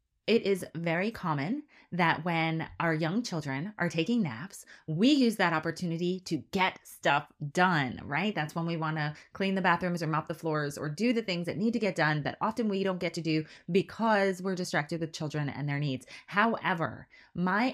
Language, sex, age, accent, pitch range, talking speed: English, female, 20-39, American, 150-190 Hz, 200 wpm